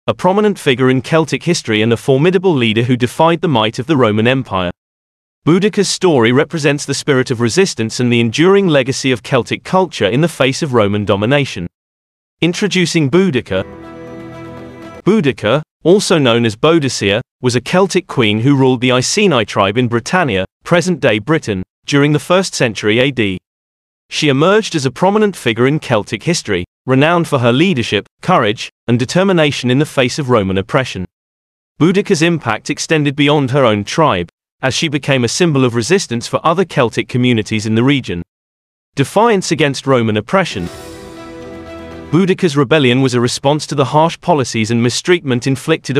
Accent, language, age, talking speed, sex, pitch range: British, English, 30-49, 160 wpm, male, 110-160 Hz